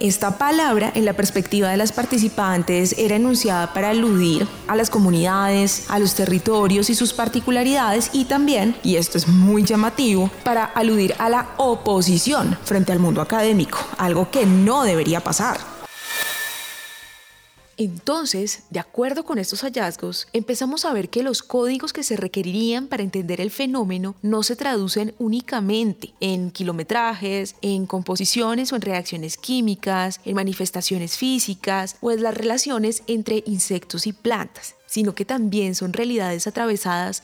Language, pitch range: Spanish, 195-245 Hz